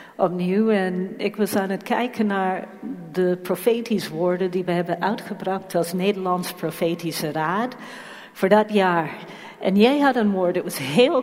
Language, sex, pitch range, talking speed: Dutch, female, 180-220 Hz, 160 wpm